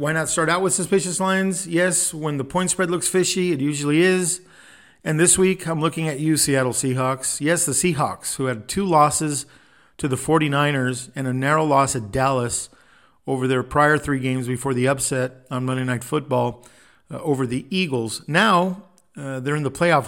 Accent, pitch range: American, 130-165 Hz